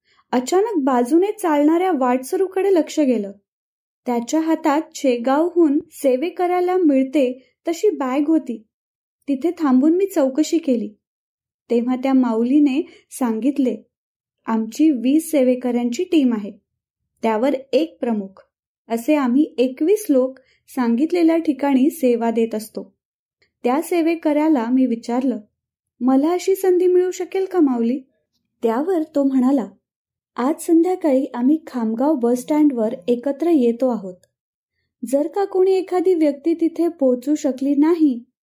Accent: native